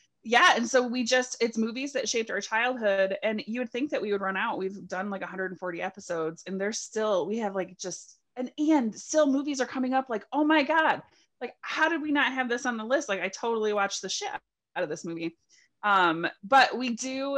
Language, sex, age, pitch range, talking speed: English, female, 20-39, 185-250 Hz, 230 wpm